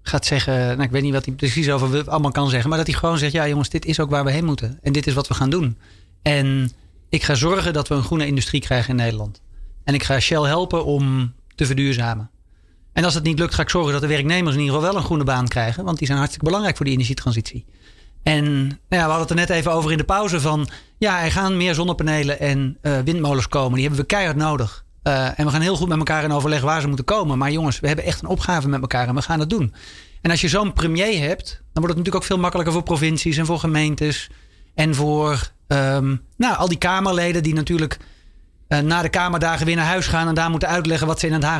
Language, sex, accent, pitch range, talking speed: Dutch, male, Dutch, 135-170 Hz, 265 wpm